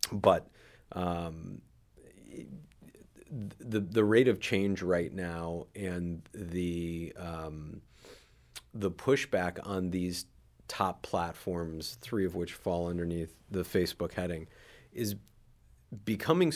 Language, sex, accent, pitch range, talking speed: English, male, American, 85-95 Hz, 100 wpm